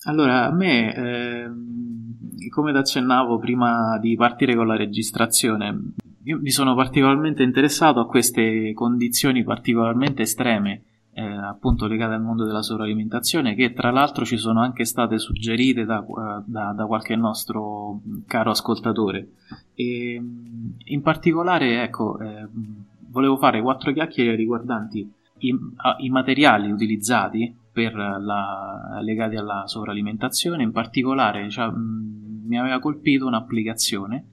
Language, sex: Italian, male